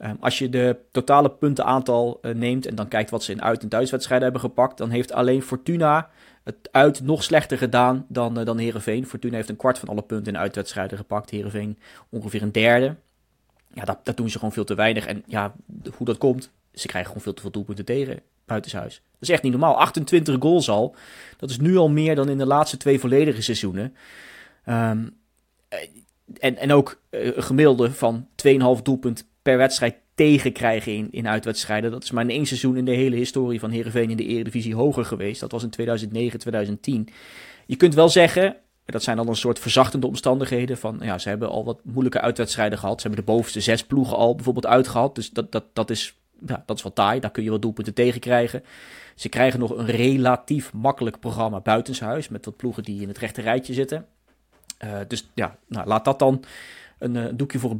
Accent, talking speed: Dutch, 210 wpm